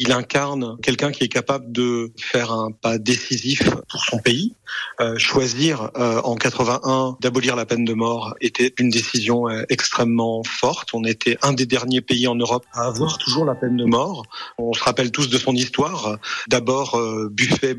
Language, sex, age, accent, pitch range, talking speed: French, male, 40-59, French, 115-135 Hz, 180 wpm